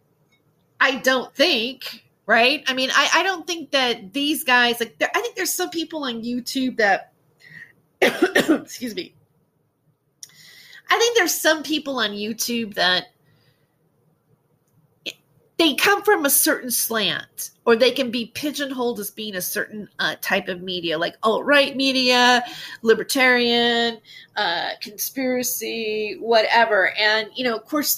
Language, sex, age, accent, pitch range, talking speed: English, female, 30-49, American, 180-280 Hz, 135 wpm